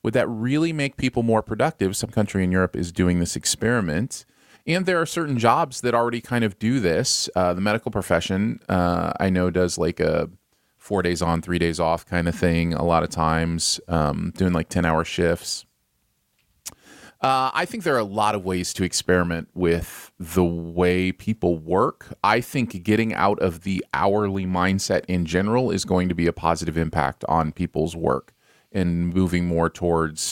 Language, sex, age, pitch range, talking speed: English, male, 30-49, 85-120 Hz, 185 wpm